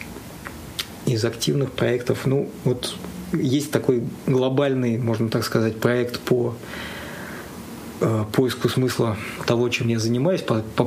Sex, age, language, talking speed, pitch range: male, 20-39, Russian, 115 wpm, 115-135 Hz